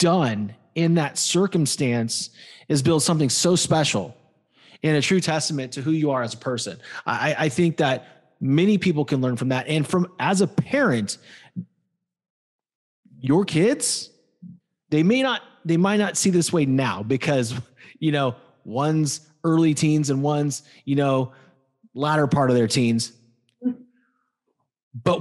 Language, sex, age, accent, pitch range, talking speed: English, male, 30-49, American, 130-180 Hz, 150 wpm